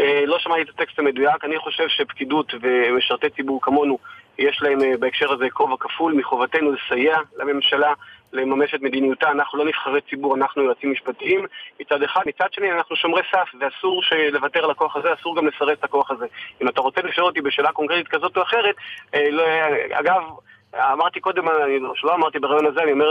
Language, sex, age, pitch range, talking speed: Hebrew, male, 30-49, 145-185 Hz, 175 wpm